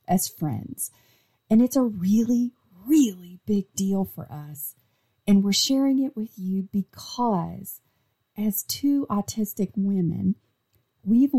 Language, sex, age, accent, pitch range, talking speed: English, female, 40-59, American, 165-235 Hz, 120 wpm